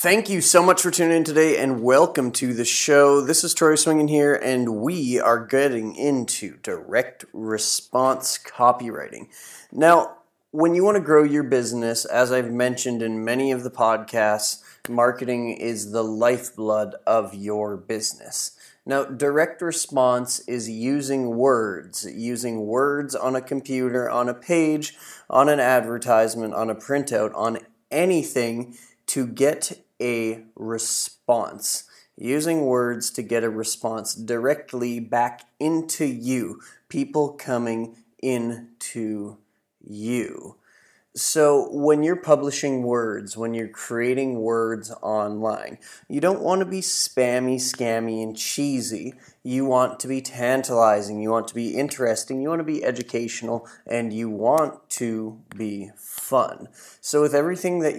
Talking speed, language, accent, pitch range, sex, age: 140 wpm, English, American, 115-140 Hz, male, 30-49